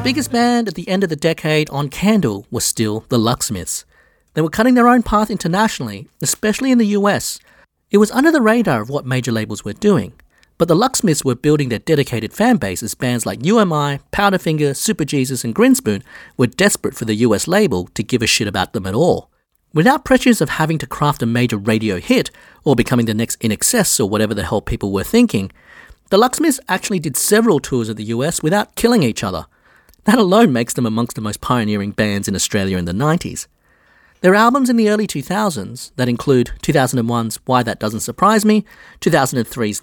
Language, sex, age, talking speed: English, male, 40-59, 200 wpm